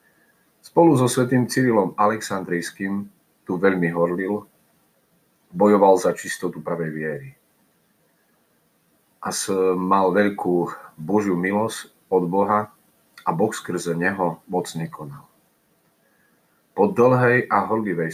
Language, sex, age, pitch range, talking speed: Slovak, male, 40-59, 85-105 Hz, 100 wpm